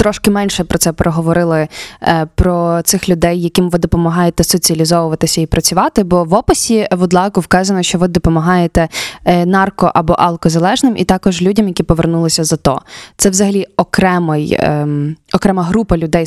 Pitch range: 170-195 Hz